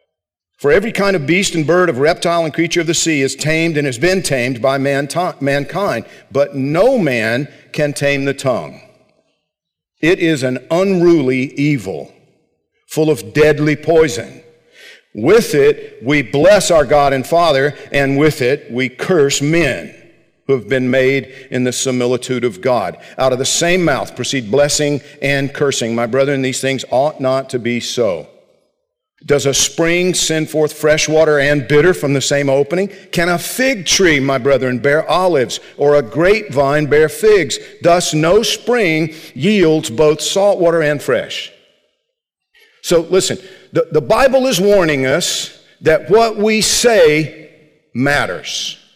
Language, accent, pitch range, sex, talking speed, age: English, American, 140-180 Hz, male, 155 wpm, 50-69